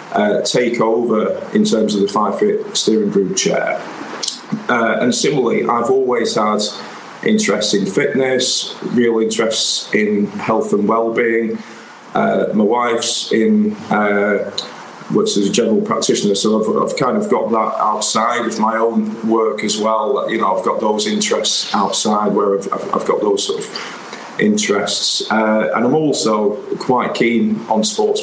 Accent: British